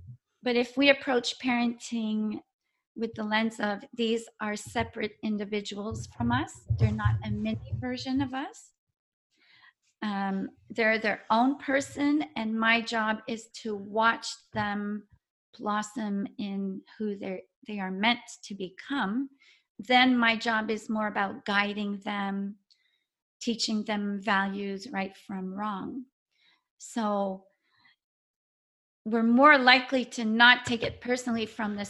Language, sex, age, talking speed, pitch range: English, female, 40-59, 130 wpm, 205-240 Hz